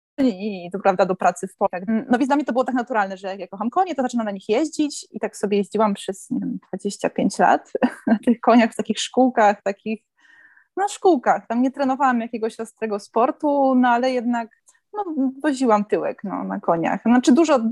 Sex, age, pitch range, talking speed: female, 20-39, 205-260 Hz, 205 wpm